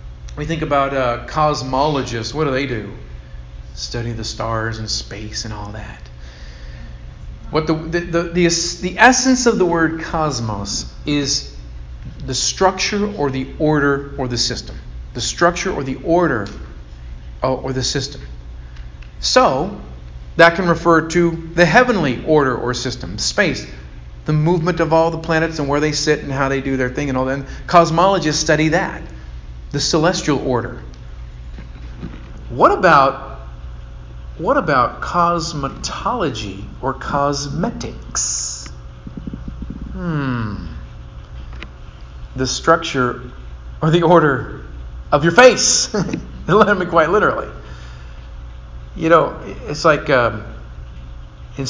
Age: 40-59